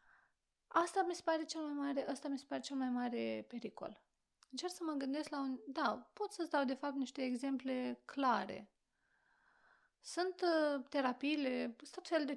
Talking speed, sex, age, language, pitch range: 140 wpm, female, 30-49, Romanian, 245-320 Hz